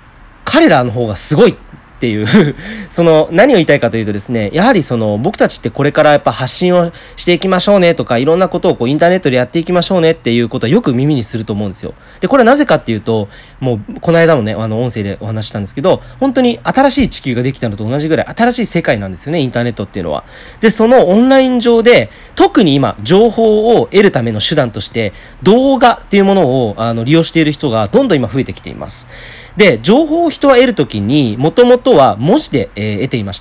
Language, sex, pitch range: Japanese, male, 115-180 Hz